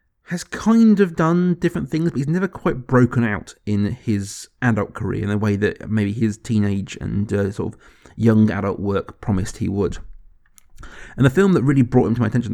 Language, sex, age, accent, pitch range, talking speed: English, male, 30-49, British, 100-115 Hz, 205 wpm